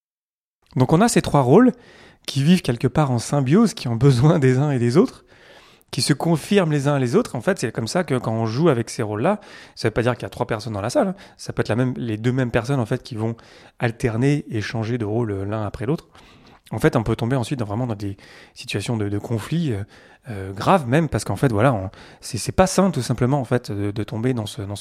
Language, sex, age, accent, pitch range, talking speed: French, male, 30-49, French, 110-140 Hz, 270 wpm